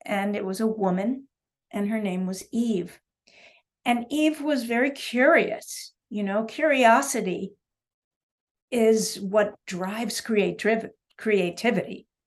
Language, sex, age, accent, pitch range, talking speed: English, female, 50-69, American, 190-235 Hz, 110 wpm